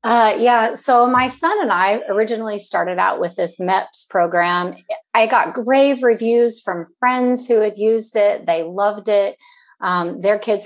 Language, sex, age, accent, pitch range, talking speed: English, female, 40-59, American, 190-250 Hz, 170 wpm